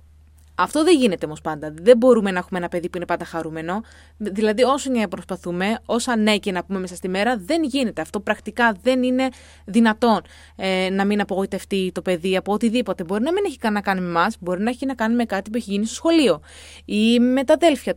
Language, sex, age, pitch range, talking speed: Greek, female, 20-39, 180-260 Hz, 220 wpm